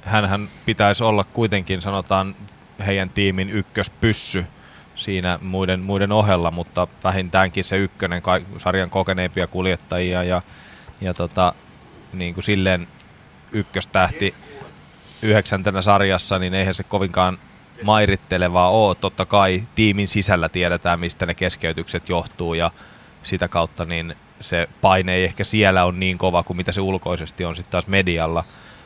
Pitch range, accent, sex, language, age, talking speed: 90-105 Hz, native, male, Finnish, 20-39, 130 wpm